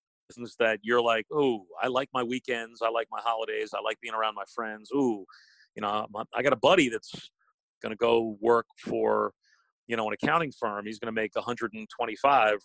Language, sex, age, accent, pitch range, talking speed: English, male, 40-59, American, 115-145 Hz, 195 wpm